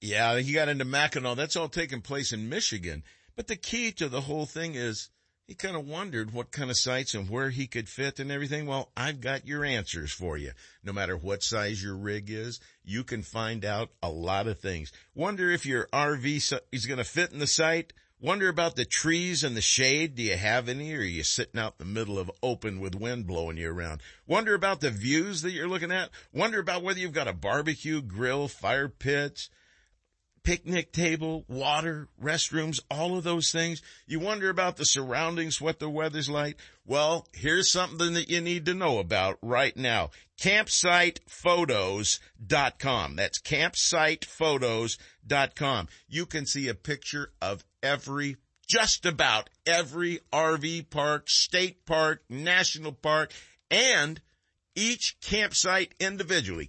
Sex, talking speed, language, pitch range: male, 170 wpm, English, 115-165 Hz